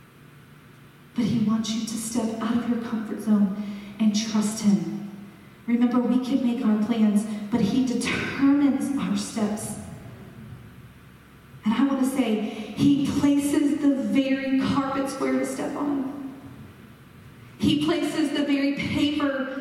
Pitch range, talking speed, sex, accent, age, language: 220-270 Hz, 135 wpm, female, American, 40-59, English